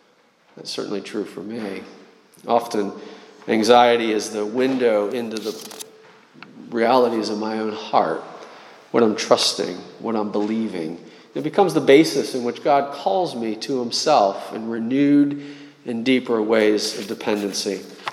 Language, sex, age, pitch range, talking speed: English, male, 40-59, 115-145 Hz, 135 wpm